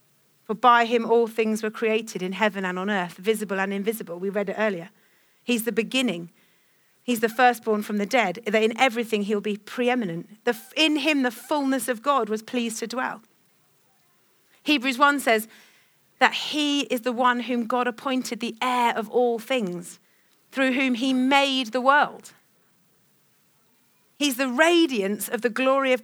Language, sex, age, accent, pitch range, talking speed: English, female, 40-59, British, 220-285 Hz, 170 wpm